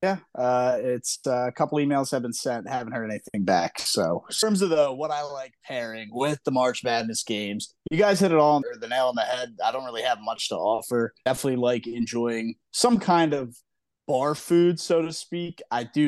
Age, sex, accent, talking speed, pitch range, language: 20-39, male, American, 225 wpm, 120-155 Hz, English